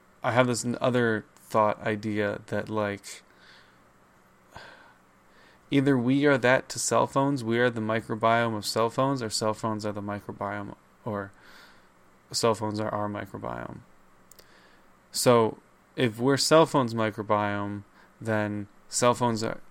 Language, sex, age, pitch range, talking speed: English, male, 20-39, 105-120 Hz, 130 wpm